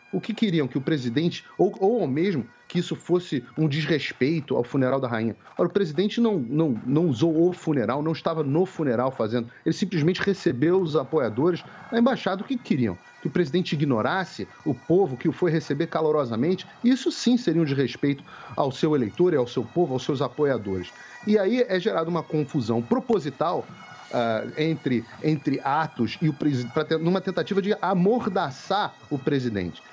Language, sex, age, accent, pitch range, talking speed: Portuguese, male, 40-59, Brazilian, 145-190 Hz, 170 wpm